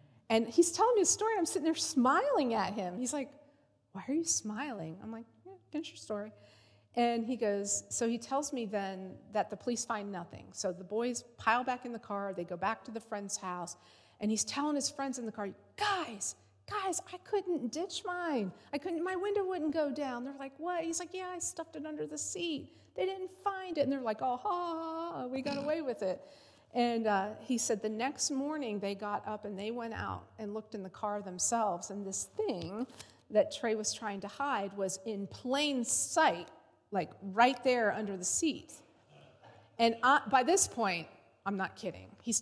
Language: English